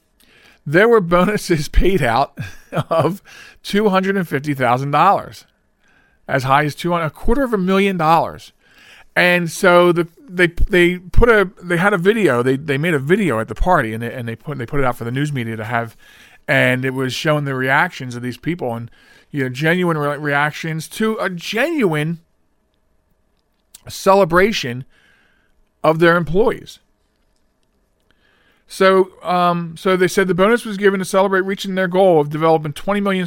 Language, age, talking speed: English, 40-59, 175 wpm